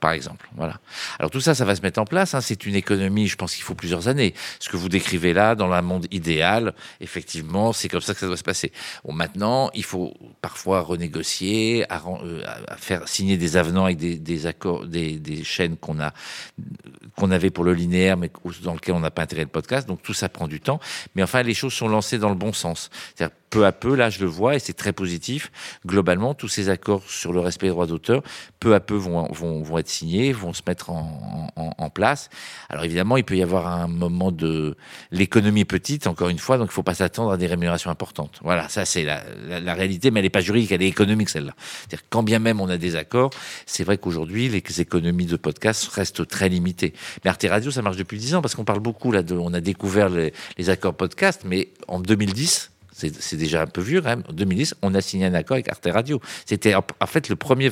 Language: French